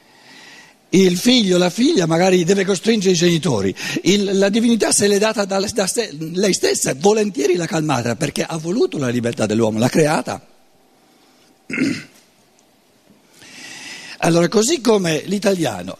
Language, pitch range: Italian, 155-220 Hz